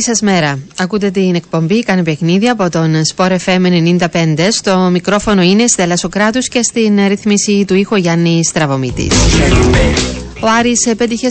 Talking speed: 145 wpm